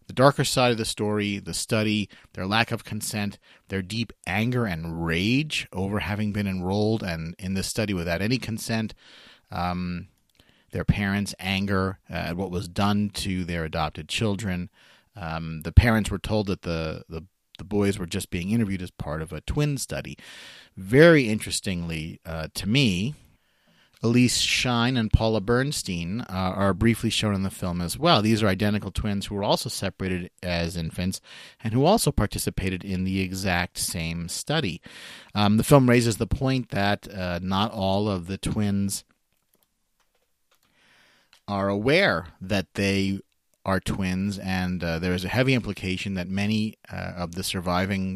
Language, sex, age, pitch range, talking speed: English, male, 30-49, 90-110 Hz, 160 wpm